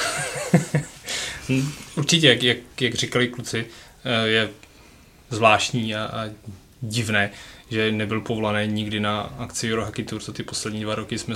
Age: 20-39